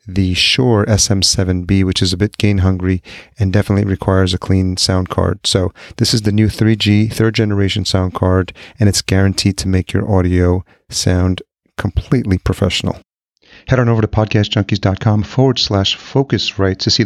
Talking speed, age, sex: 165 wpm, 40-59, male